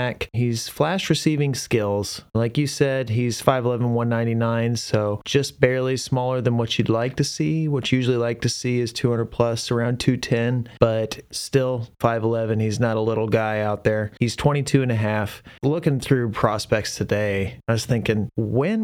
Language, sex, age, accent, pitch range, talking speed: English, male, 30-49, American, 105-130 Hz, 170 wpm